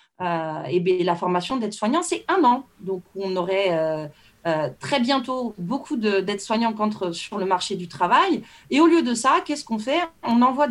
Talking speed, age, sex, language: 205 wpm, 30-49, female, French